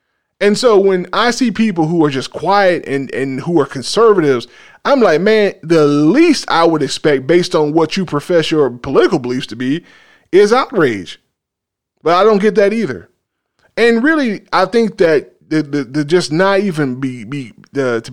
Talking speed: 185 wpm